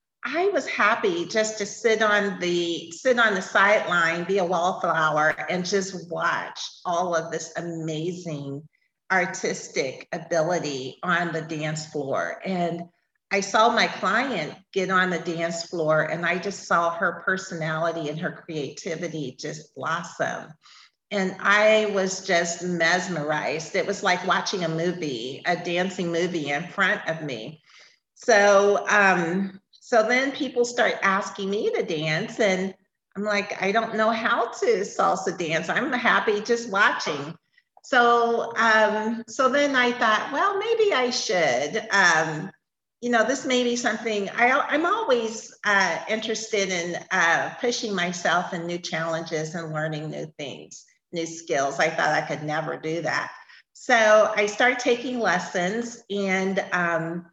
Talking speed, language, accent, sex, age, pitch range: 145 wpm, English, American, female, 50-69, 165-220 Hz